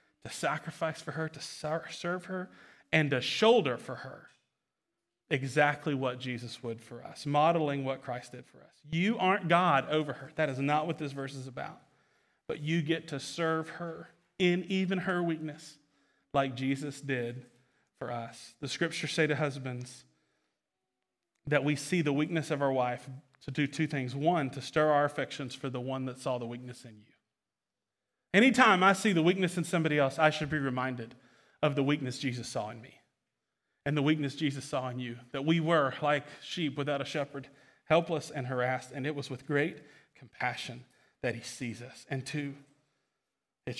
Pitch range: 130-155 Hz